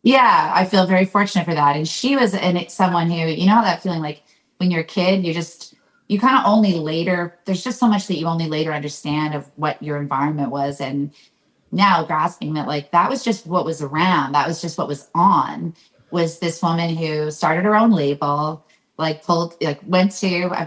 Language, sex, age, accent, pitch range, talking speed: English, female, 30-49, American, 150-180 Hz, 210 wpm